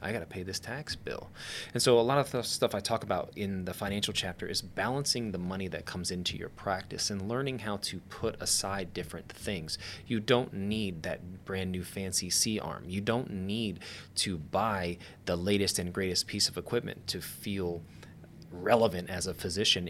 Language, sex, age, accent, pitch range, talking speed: English, male, 30-49, American, 90-110 Hz, 195 wpm